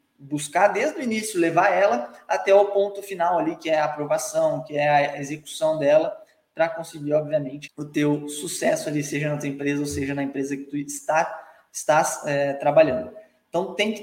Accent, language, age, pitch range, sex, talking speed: Brazilian, Portuguese, 20-39, 155-235 Hz, male, 190 wpm